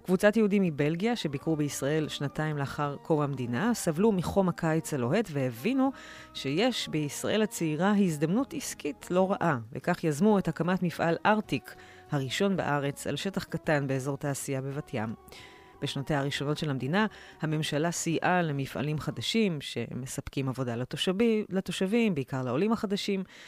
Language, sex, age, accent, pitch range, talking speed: Hebrew, female, 30-49, native, 140-185 Hz, 130 wpm